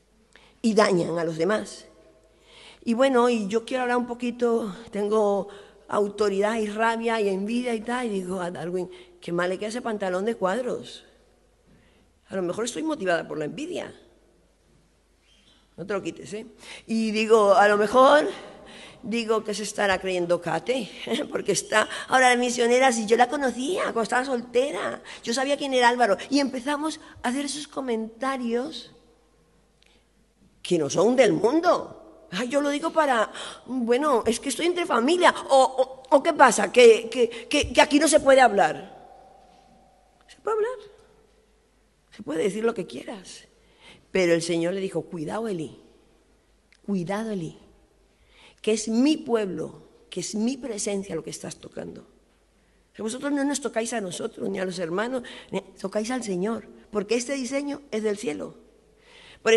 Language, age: Spanish, 50-69